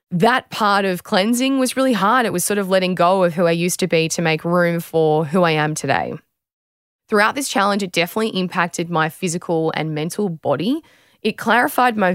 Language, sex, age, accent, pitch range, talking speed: English, female, 20-39, Australian, 160-200 Hz, 200 wpm